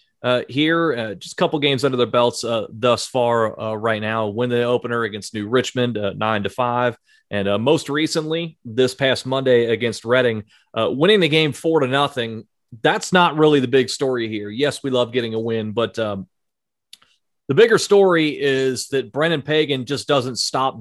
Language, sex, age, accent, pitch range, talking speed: English, male, 30-49, American, 115-135 Hz, 190 wpm